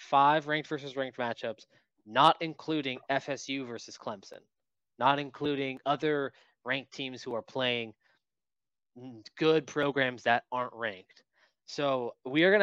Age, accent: 20-39, American